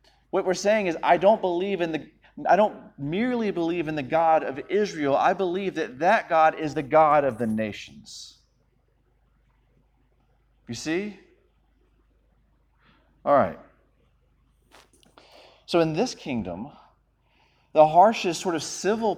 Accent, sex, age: American, male, 30-49